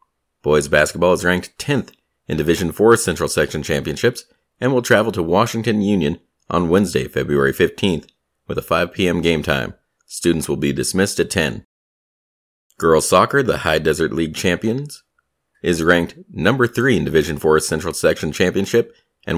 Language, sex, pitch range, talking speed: English, male, 75-100 Hz, 160 wpm